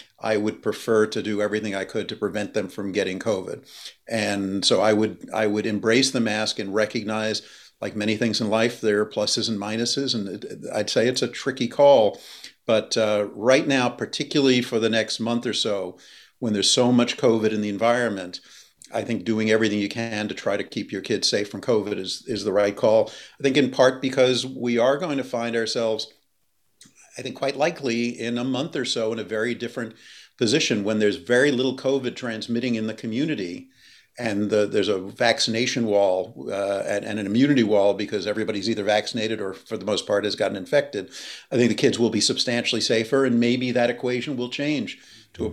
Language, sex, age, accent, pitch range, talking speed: English, male, 50-69, American, 105-120 Hz, 205 wpm